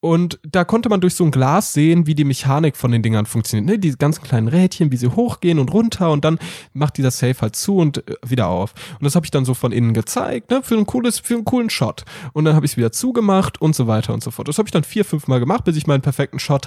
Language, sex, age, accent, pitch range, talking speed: German, male, 10-29, German, 125-175 Hz, 285 wpm